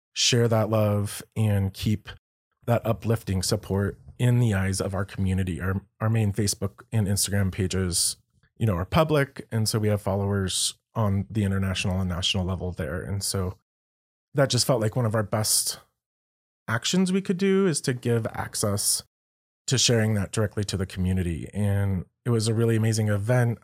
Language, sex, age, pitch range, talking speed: English, male, 30-49, 95-115 Hz, 175 wpm